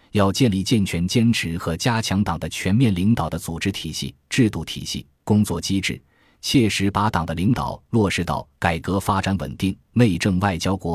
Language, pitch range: Chinese, 85-110 Hz